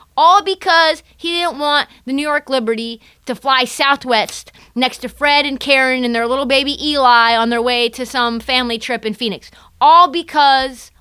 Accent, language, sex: American, English, female